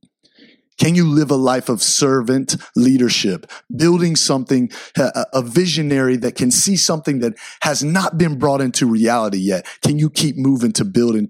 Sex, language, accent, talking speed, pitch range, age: male, English, American, 165 wpm, 115-155 Hz, 30-49